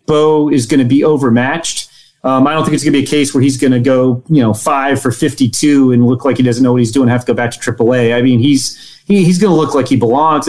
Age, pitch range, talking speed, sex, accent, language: 30-49, 125-160 Hz, 305 wpm, male, American, English